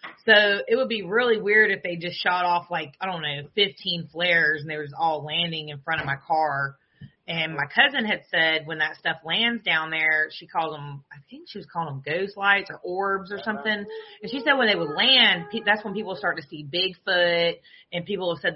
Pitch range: 150-190 Hz